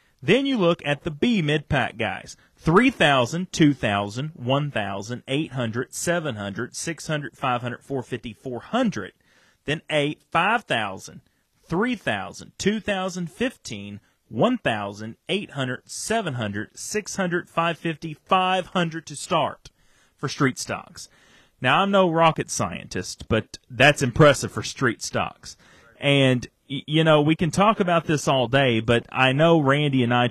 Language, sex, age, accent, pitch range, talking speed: English, male, 40-59, American, 115-165 Hz, 115 wpm